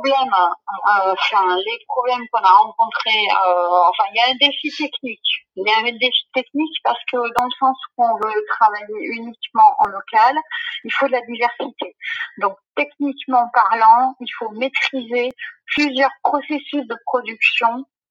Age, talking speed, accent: 40-59, 160 wpm, French